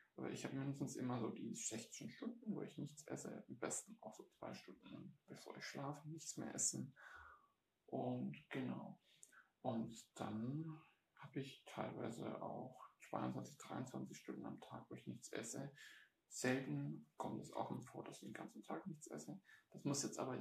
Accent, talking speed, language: German, 175 wpm, German